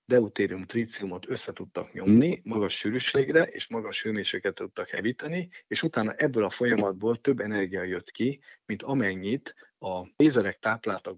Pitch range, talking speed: 100-115 Hz, 135 wpm